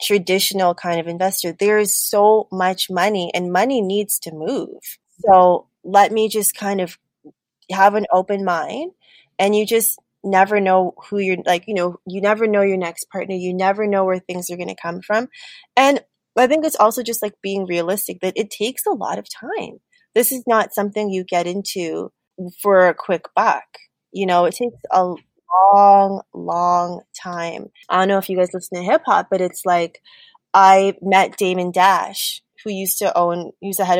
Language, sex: English, female